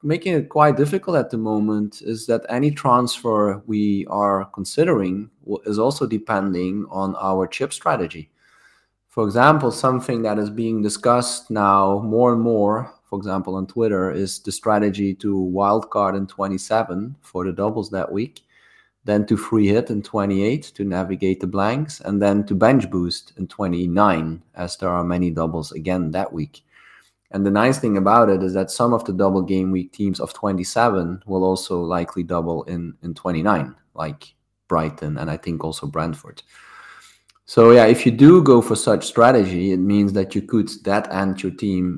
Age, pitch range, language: 20-39, 90-110 Hz, English